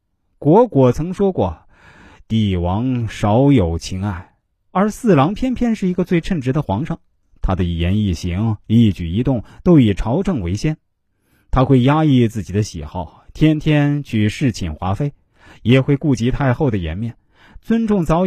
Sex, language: male, Chinese